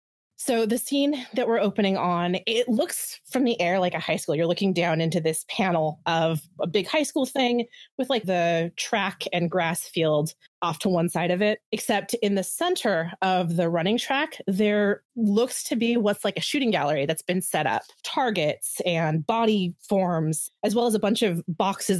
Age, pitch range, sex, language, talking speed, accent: 20-39, 170-215 Hz, female, English, 200 wpm, American